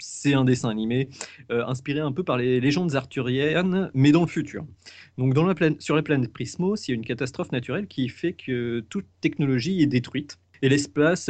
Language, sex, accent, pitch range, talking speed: French, male, French, 110-145 Hz, 210 wpm